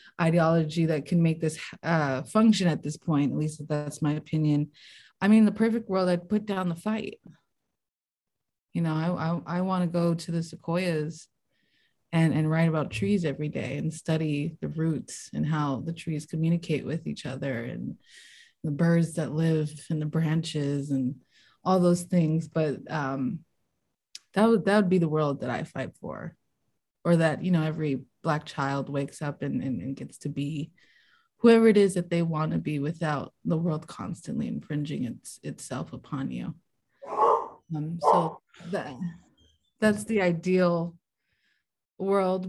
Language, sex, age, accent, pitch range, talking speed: English, female, 20-39, American, 150-185 Hz, 165 wpm